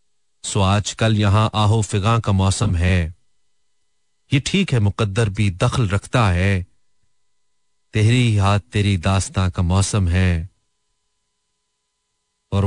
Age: 40-59